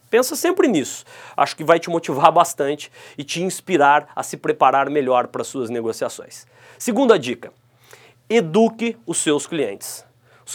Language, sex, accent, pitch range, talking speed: Portuguese, male, Brazilian, 140-215 Hz, 150 wpm